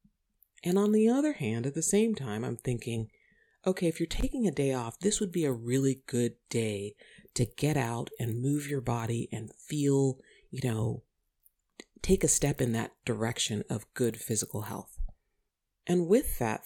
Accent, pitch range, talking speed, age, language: American, 110-160 Hz, 175 wpm, 40-59, English